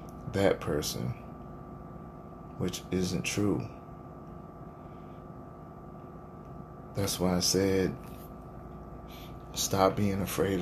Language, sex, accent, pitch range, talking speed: English, male, American, 95-115 Hz, 70 wpm